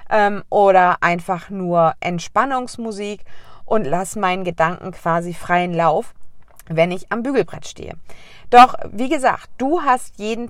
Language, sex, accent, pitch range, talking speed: German, female, German, 180-235 Hz, 125 wpm